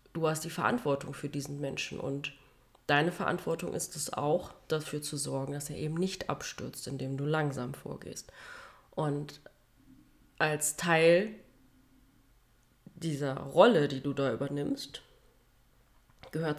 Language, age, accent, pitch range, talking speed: German, 30-49, German, 140-185 Hz, 125 wpm